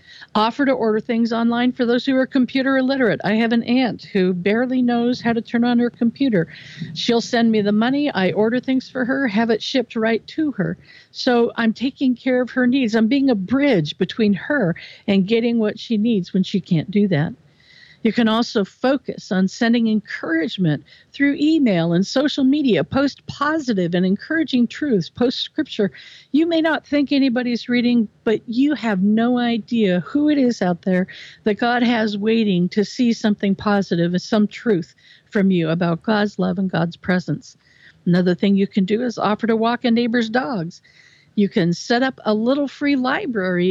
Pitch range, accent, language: 195-250 Hz, American, English